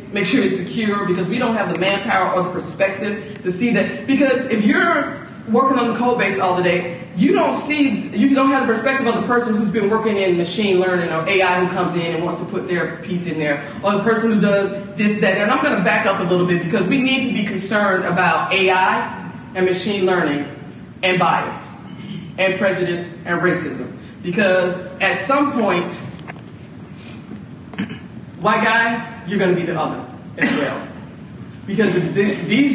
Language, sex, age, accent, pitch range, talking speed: English, female, 40-59, American, 180-230 Hz, 190 wpm